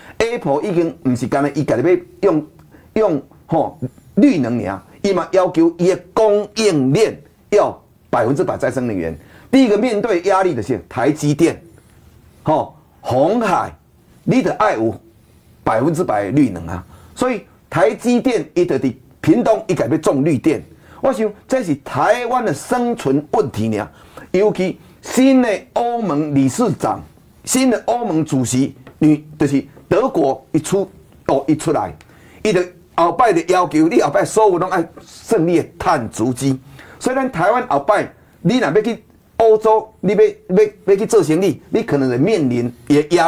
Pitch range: 140-220 Hz